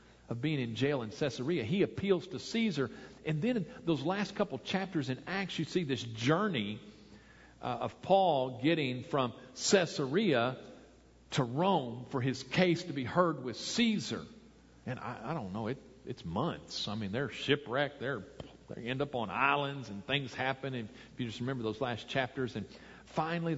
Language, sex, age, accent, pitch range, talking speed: English, male, 50-69, American, 120-155 Hz, 180 wpm